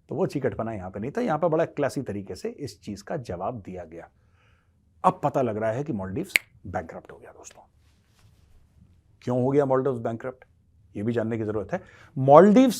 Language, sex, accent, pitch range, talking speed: Hindi, male, native, 105-170 Hz, 200 wpm